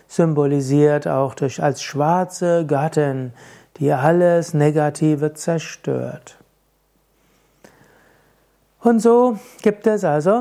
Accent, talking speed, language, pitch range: German, 85 wpm, German, 145-175 Hz